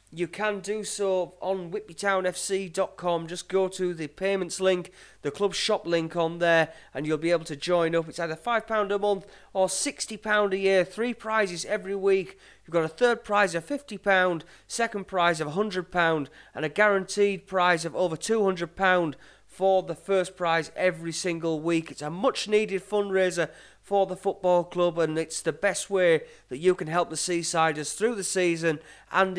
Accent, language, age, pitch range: British, English, 30-49, 165-200 Hz